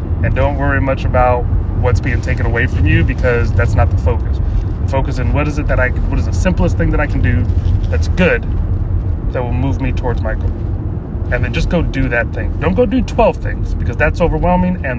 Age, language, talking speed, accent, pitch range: 30-49, English, 230 wpm, American, 90-105 Hz